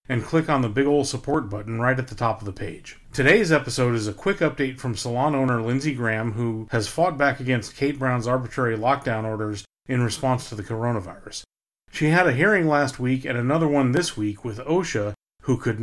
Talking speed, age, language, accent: 210 wpm, 40-59, English, American